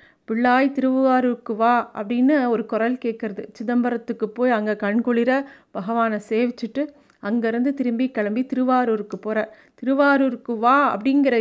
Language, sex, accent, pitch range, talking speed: Tamil, female, native, 215-260 Hz, 110 wpm